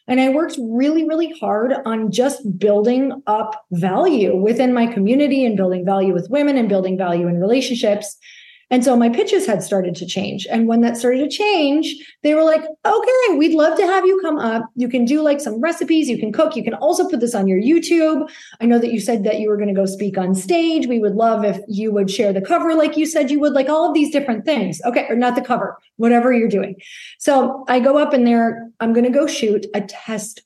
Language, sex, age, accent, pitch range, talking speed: English, female, 30-49, American, 210-300 Hz, 240 wpm